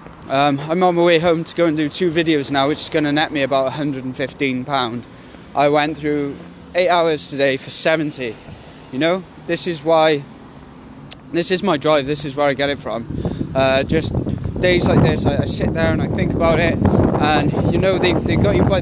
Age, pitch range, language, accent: 20-39, 145-170 Hz, English, British